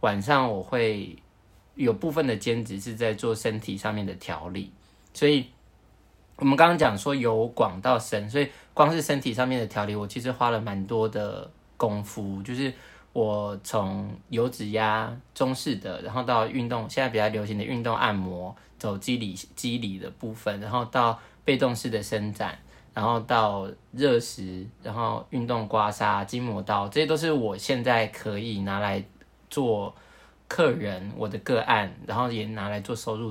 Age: 20-39